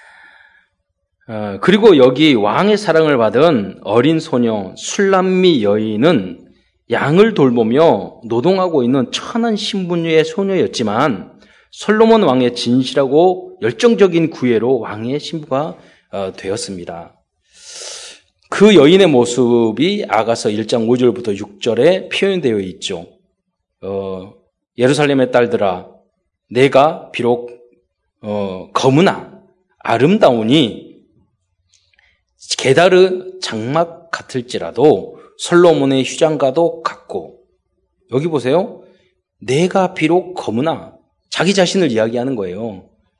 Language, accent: Korean, native